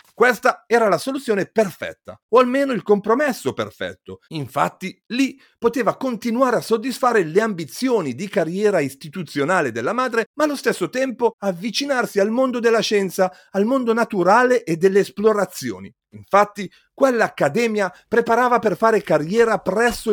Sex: male